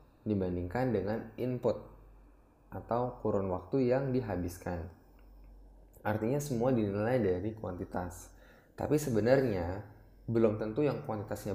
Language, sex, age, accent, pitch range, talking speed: Indonesian, male, 20-39, native, 100-125 Hz, 100 wpm